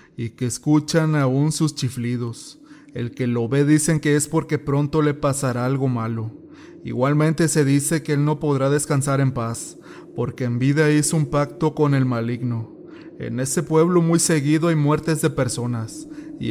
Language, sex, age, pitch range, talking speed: Spanish, male, 30-49, 125-155 Hz, 175 wpm